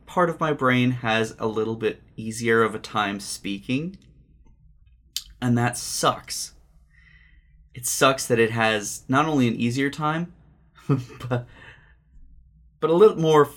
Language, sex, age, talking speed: English, male, 20-39, 135 wpm